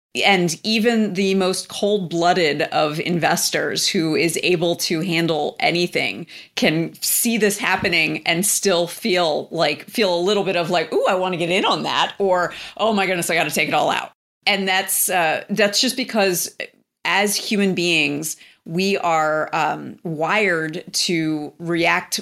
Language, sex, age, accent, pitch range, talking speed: English, female, 30-49, American, 165-200 Hz, 165 wpm